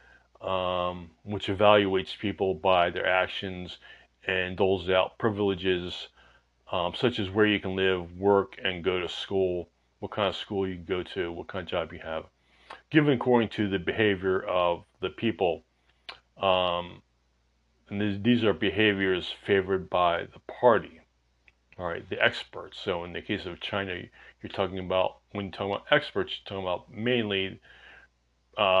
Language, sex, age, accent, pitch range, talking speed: English, male, 30-49, American, 80-100 Hz, 160 wpm